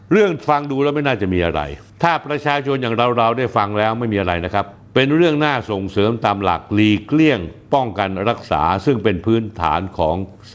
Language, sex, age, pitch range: Thai, male, 60-79, 100-145 Hz